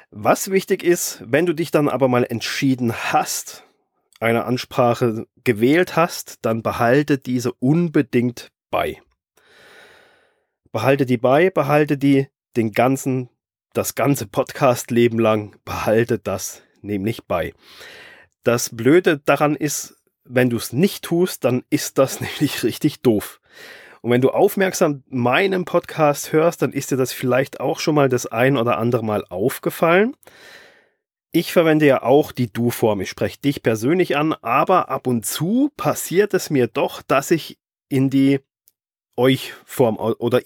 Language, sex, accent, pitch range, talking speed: German, male, German, 125-155 Hz, 145 wpm